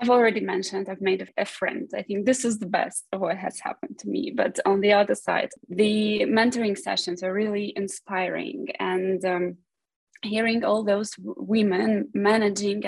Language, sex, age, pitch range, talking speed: English, female, 20-39, 190-225 Hz, 170 wpm